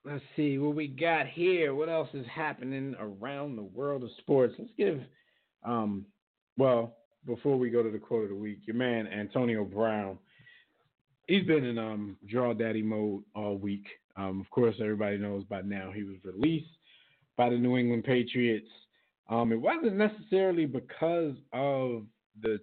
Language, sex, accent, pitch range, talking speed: English, male, American, 105-135 Hz, 165 wpm